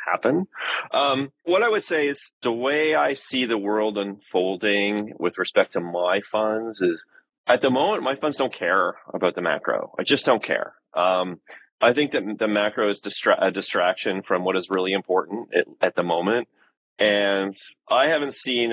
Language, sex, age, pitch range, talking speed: English, male, 30-49, 95-125 Hz, 185 wpm